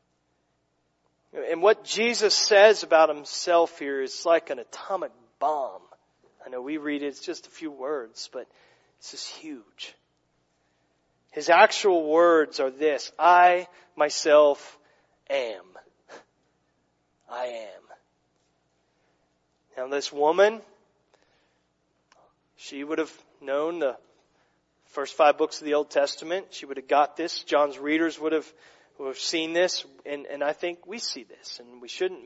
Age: 40-59